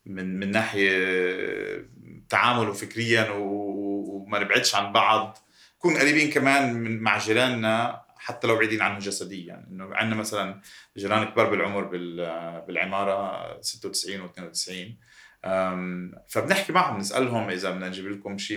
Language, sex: Arabic, male